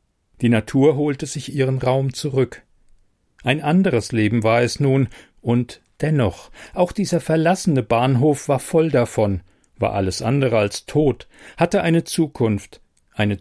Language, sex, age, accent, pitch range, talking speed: German, male, 40-59, German, 100-140 Hz, 140 wpm